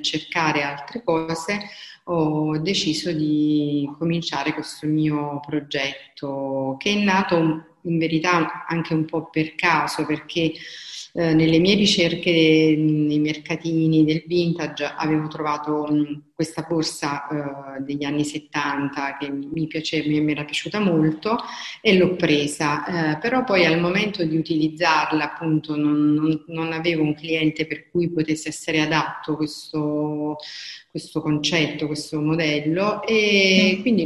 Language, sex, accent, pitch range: Italian, female, native, 150-165 Hz